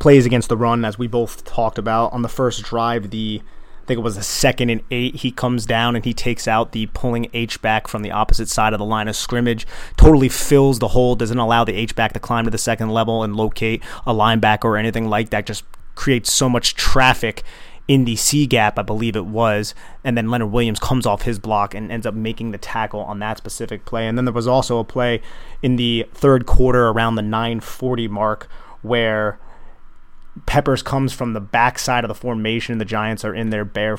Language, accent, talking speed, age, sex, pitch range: English, American, 225 wpm, 30-49, male, 110-120 Hz